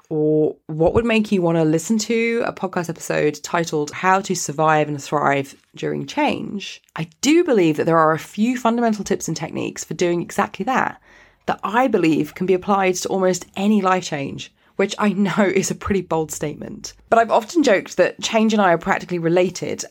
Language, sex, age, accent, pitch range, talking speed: English, female, 20-39, British, 175-225 Hz, 200 wpm